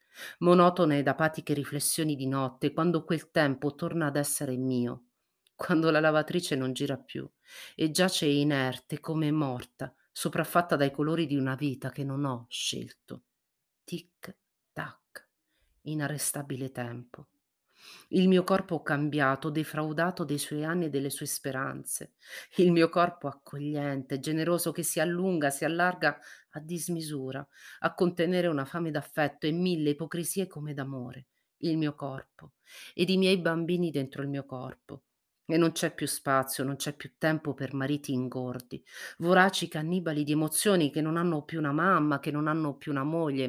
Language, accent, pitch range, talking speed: Italian, native, 140-175 Hz, 155 wpm